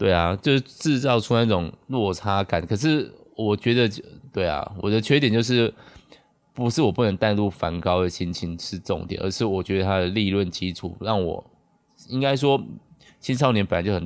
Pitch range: 95-120 Hz